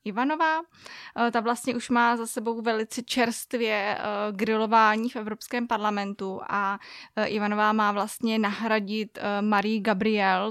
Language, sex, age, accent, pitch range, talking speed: Czech, female, 20-39, native, 205-225 Hz, 115 wpm